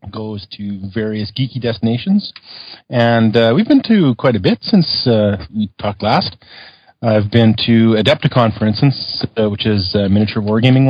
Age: 30-49